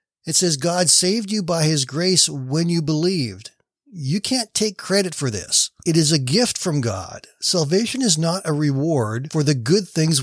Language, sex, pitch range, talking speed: English, male, 125-165 Hz, 190 wpm